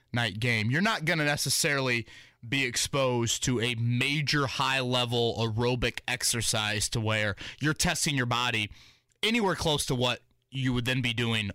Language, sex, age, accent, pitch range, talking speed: English, male, 20-39, American, 110-135 Hz, 155 wpm